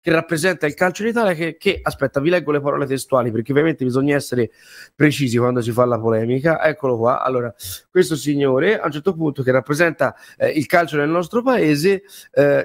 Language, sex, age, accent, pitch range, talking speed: Italian, male, 30-49, native, 135-220 Hz, 200 wpm